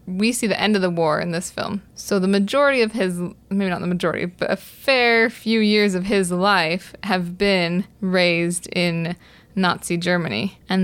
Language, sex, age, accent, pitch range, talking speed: English, female, 20-39, American, 180-200 Hz, 190 wpm